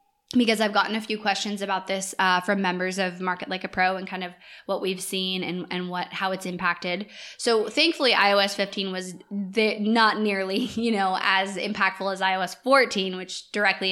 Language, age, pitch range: English, 20-39, 185-215 Hz